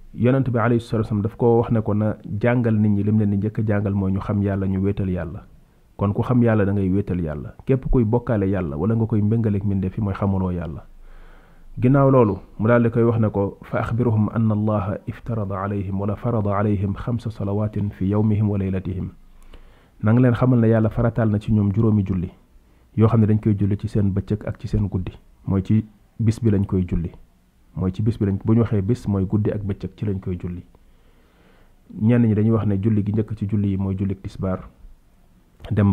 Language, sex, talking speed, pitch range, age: French, male, 95 wpm, 95-110 Hz, 30-49